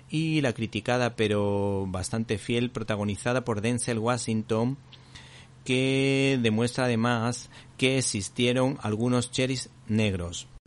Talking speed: 100 wpm